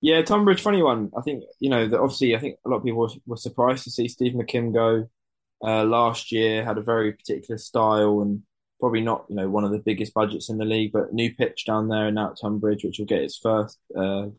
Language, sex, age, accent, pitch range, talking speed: English, male, 10-29, British, 105-115 Hz, 240 wpm